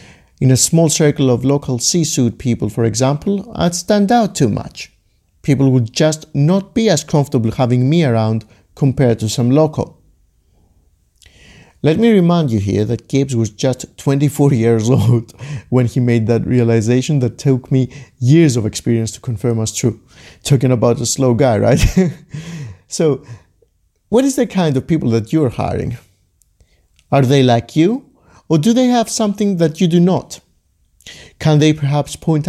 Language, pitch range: English, 115-155 Hz